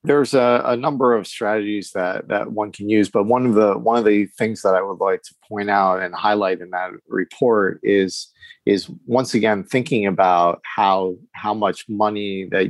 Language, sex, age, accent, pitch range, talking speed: English, male, 40-59, American, 95-110 Hz, 200 wpm